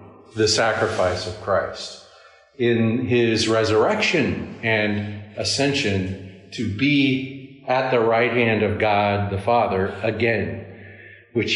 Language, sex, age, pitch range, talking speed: English, male, 50-69, 105-125 Hz, 110 wpm